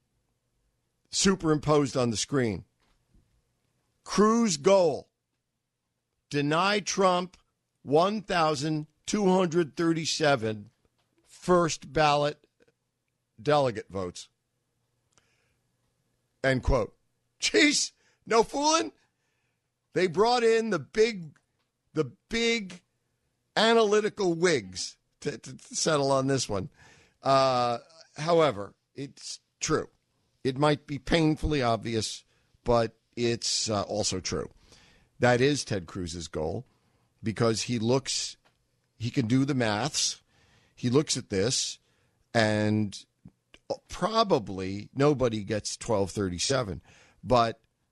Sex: male